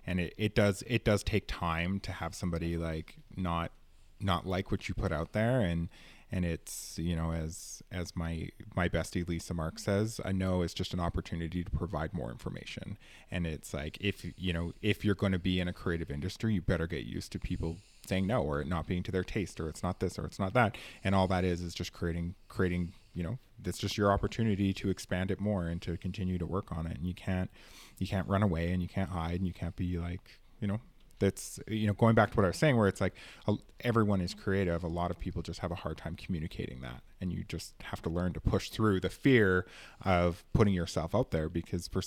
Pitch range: 85-105 Hz